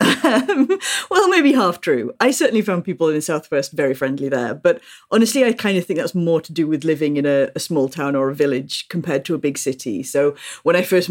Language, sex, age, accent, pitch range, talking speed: English, female, 40-59, British, 155-205 Hz, 240 wpm